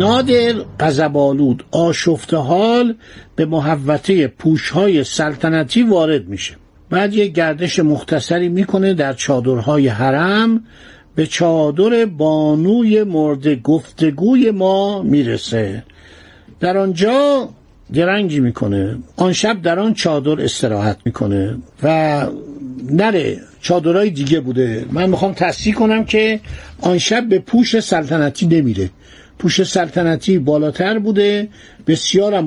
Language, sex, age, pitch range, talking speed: Persian, male, 60-79, 150-200 Hz, 100 wpm